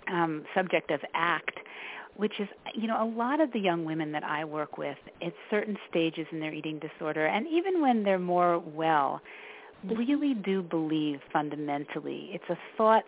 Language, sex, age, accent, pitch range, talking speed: English, female, 40-59, American, 155-185 Hz, 175 wpm